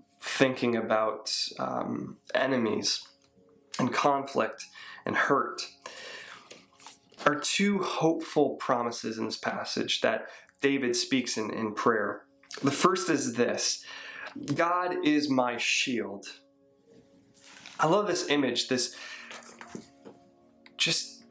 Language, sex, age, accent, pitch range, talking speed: English, male, 20-39, American, 120-155 Hz, 100 wpm